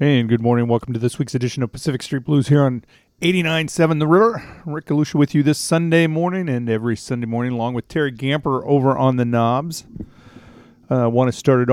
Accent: American